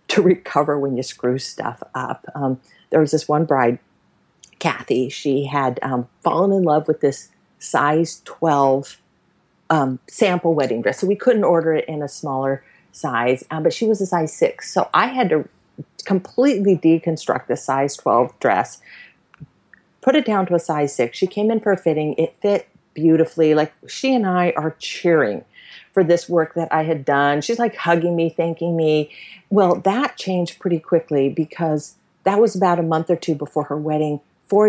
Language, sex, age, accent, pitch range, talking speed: English, female, 40-59, American, 145-180 Hz, 185 wpm